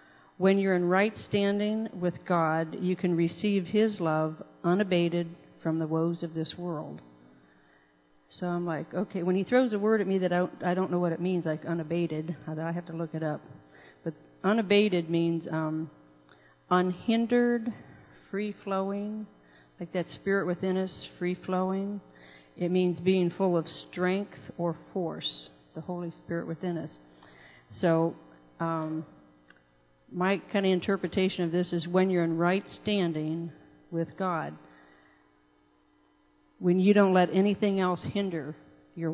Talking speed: 145 wpm